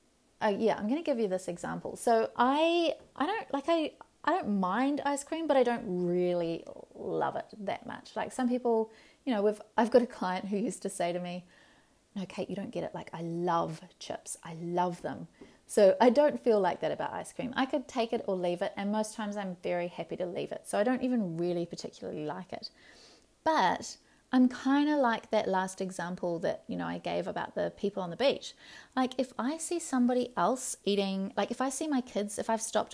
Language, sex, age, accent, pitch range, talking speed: English, female, 30-49, Australian, 190-260 Hz, 230 wpm